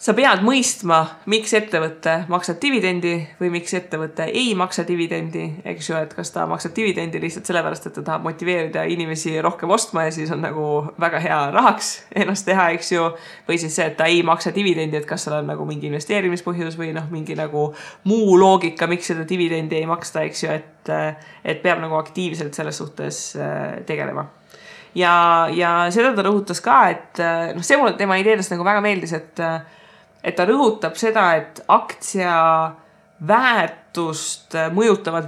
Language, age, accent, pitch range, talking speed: English, 20-39, Finnish, 160-195 Hz, 155 wpm